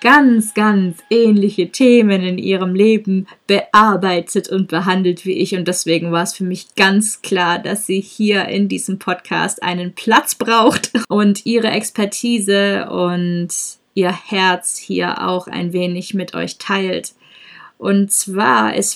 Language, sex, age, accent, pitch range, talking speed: German, female, 20-39, German, 185-225 Hz, 140 wpm